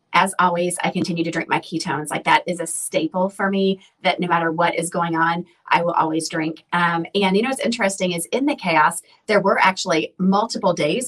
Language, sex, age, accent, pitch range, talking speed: English, female, 30-49, American, 165-195 Hz, 220 wpm